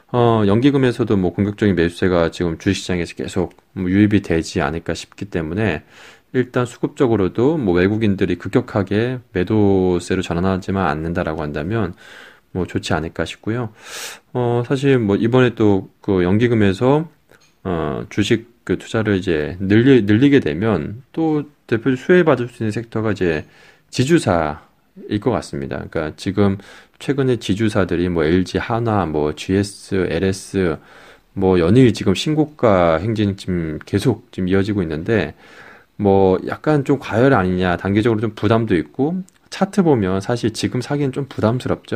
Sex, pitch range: male, 95-120 Hz